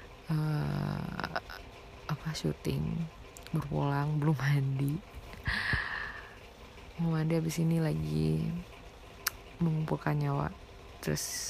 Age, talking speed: 20-39, 75 wpm